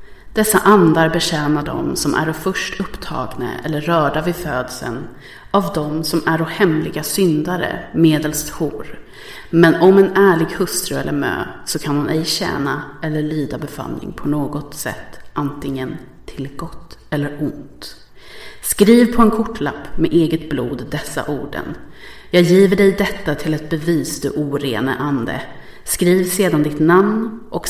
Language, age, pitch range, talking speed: English, 30-49, 150-190 Hz, 145 wpm